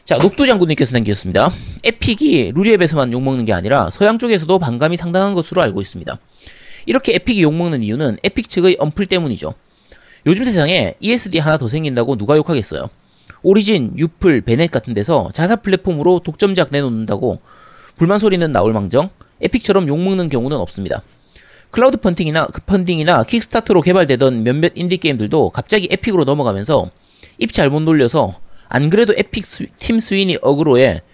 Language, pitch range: Korean, 130-195 Hz